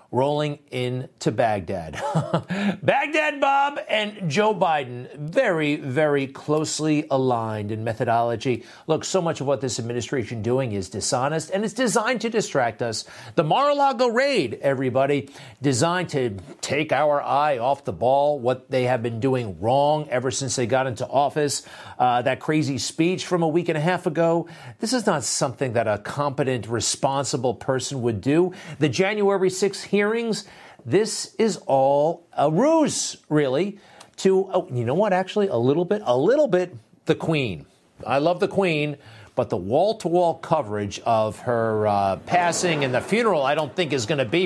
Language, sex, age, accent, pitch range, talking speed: English, male, 50-69, American, 130-190 Hz, 165 wpm